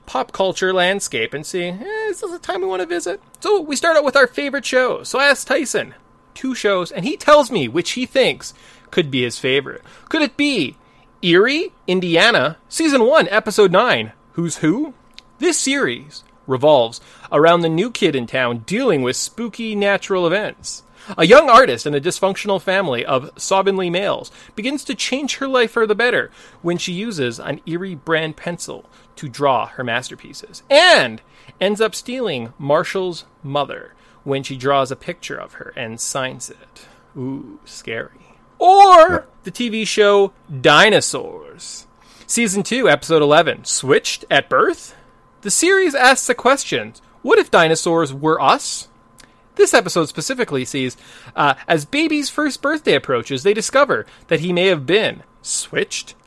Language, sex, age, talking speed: English, male, 30-49, 160 wpm